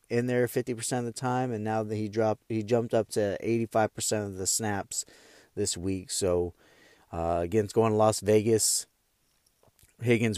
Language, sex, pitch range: English, male, 100-120 Hz